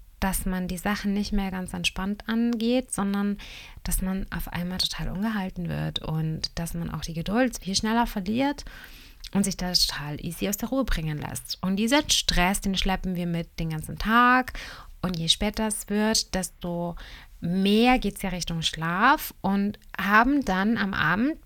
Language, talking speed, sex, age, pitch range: German, 175 wpm, female, 30-49, 175-220 Hz